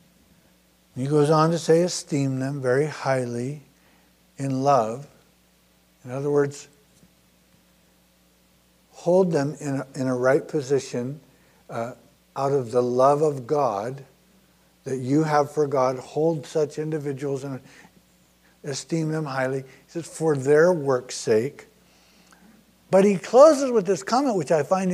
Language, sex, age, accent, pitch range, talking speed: English, male, 60-79, American, 135-200 Hz, 130 wpm